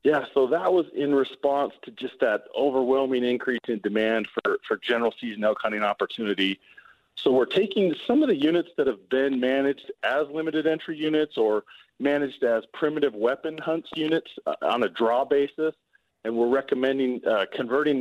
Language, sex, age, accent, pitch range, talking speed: English, male, 40-59, American, 120-155 Hz, 175 wpm